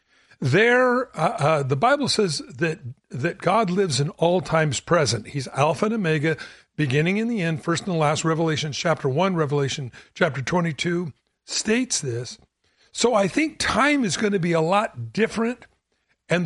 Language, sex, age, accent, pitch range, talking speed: English, male, 60-79, American, 155-205 Hz, 170 wpm